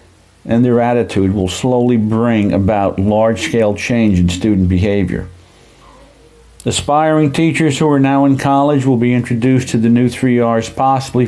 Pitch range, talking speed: 100-130 Hz, 145 wpm